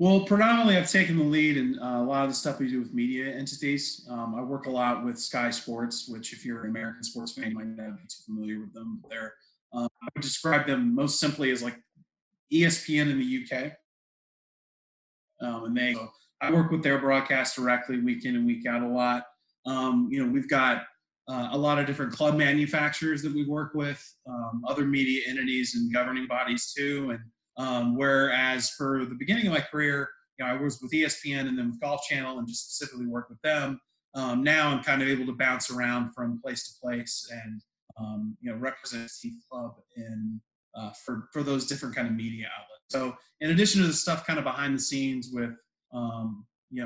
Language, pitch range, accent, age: English, 120-145 Hz, American, 30-49